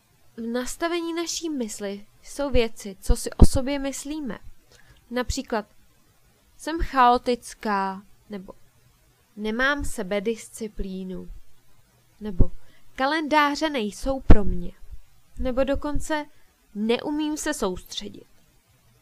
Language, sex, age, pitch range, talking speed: Czech, female, 20-39, 205-280 Hz, 85 wpm